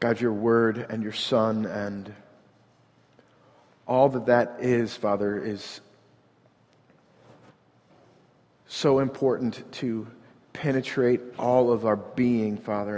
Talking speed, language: 100 wpm, English